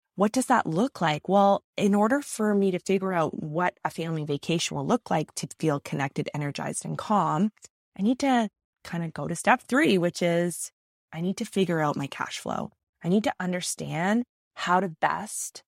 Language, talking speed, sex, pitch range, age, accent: English, 200 wpm, female, 155-205 Hz, 20-39, American